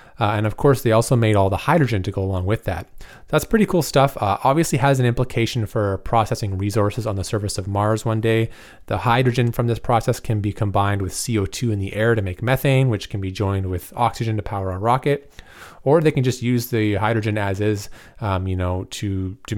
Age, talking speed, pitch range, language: 30-49, 225 wpm, 100-120 Hz, English